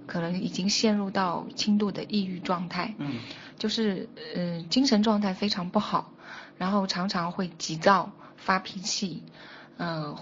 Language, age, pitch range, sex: Chinese, 20-39, 180-225 Hz, female